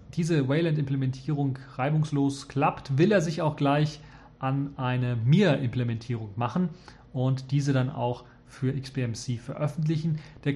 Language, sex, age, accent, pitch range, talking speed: German, male, 30-49, German, 130-160 Hz, 120 wpm